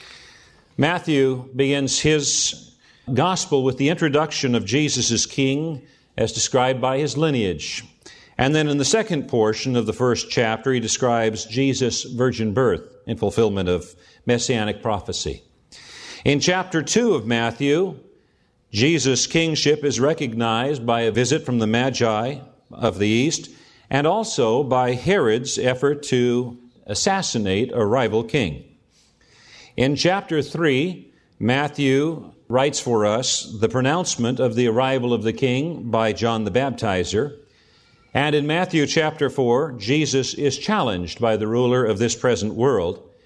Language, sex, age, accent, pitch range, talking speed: English, male, 50-69, American, 115-140 Hz, 135 wpm